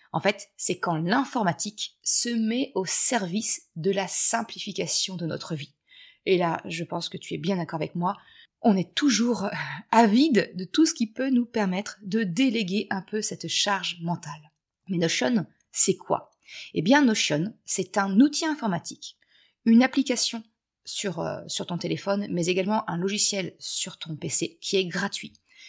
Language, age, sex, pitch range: French, 30-49, female, 175-235 Hz